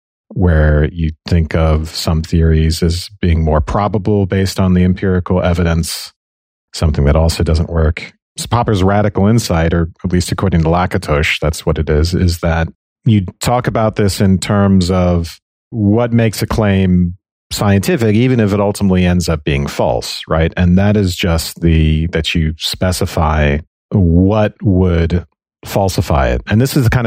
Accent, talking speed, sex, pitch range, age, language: American, 165 wpm, male, 80-100 Hz, 40-59, English